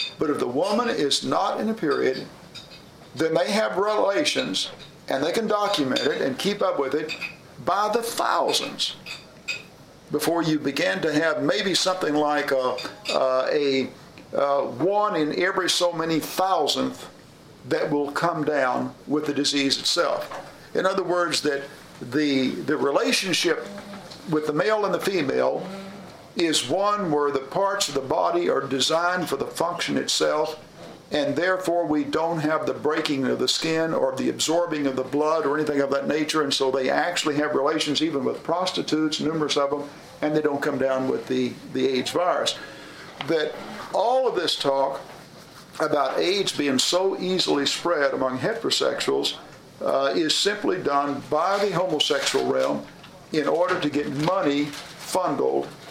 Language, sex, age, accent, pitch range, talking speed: English, male, 50-69, American, 140-175 Hz, 160 wpm